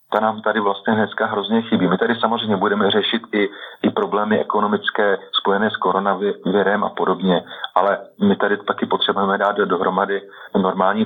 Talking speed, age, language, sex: 155 wpm, 40-59, Slovak, male